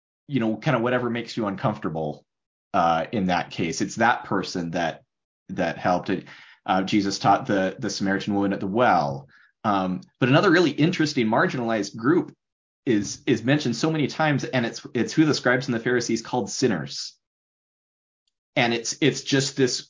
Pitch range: 100-135 Hz